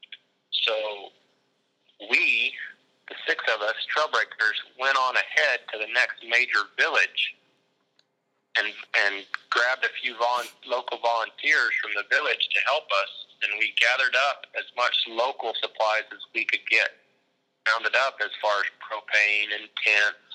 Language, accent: English, American